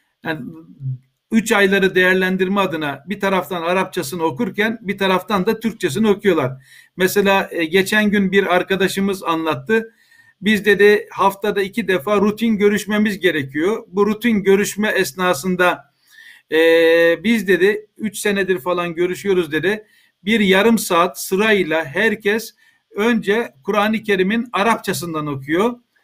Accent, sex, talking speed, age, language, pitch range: native, male, 115 wpm, 50-69, Turkish, 180-225 Hz